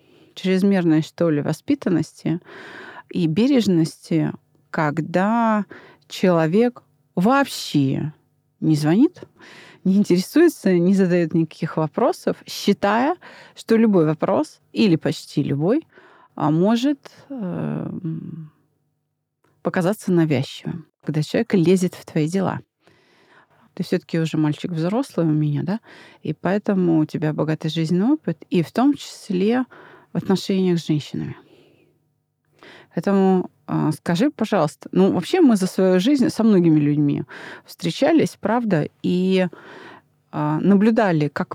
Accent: native